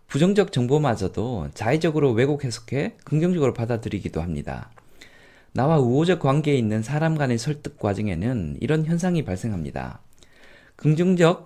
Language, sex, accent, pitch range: Korean, male, native, 110-165 Hz